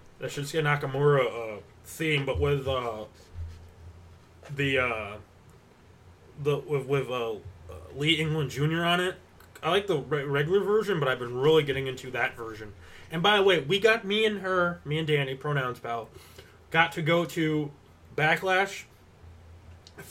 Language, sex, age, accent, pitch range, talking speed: English, male, 20-39, American, 115-160 Hz, 150 wpm